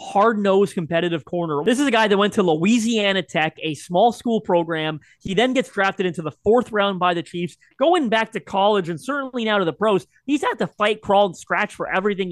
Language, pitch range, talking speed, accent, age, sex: English, 170-220 Hz, 225 wpm, American, 20-39, male